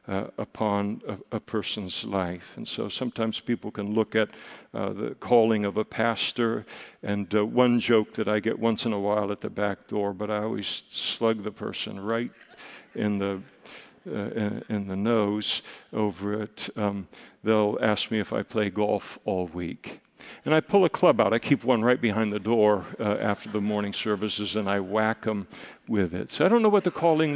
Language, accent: English, American